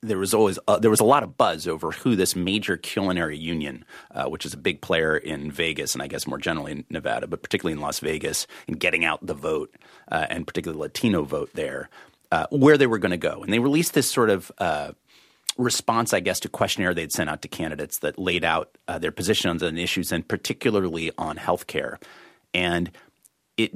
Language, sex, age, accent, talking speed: English, male, 30-49, American, 215 wpm